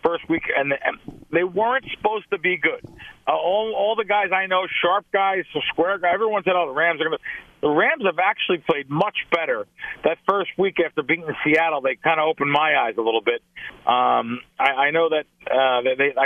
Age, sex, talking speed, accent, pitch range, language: 40-59, male, 210 wpm, American, 145-195 Hz, English